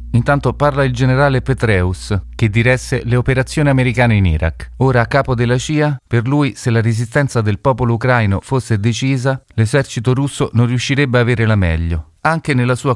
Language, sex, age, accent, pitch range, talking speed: Italian, male, 30-49, native, 110-135 Hz, 175 wpm